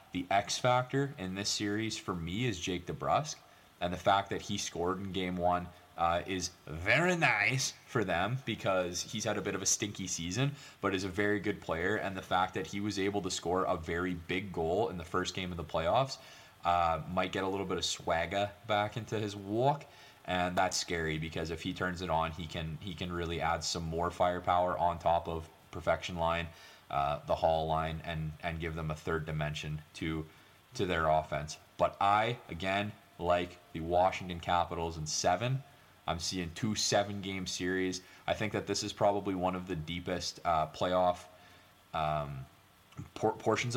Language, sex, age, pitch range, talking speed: English, male, 20-39, 85-105 Hz, 190 wpm